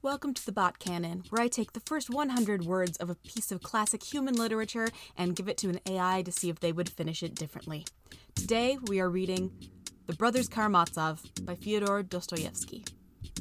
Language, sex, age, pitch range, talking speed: English, female, 20-39, 170-225 Hz, 190 wpm